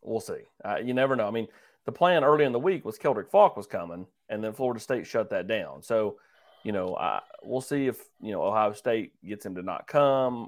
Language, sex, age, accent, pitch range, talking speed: English, male, 30-49, American, 105-130 Hz, 240 wpm